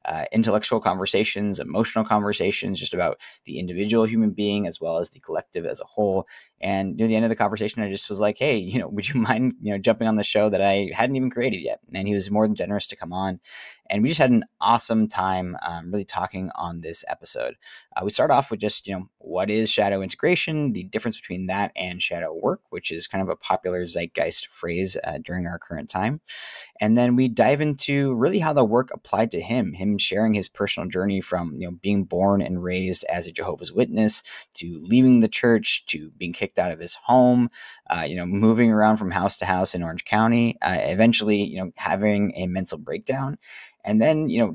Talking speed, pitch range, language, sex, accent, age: 220 wpm, 95-115 Hz, English, male, American, 20-39